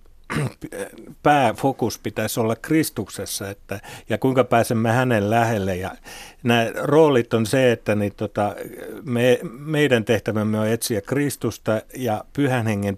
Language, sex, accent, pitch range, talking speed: Finnish, male, native, 105-125 Hz, 125 wpm